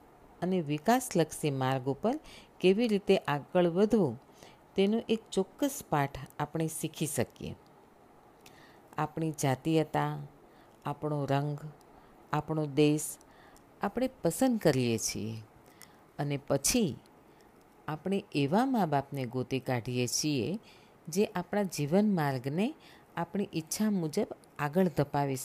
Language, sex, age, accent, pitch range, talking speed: Gujarati, female, 50-69, native, 140-210 Hz, 105 wpm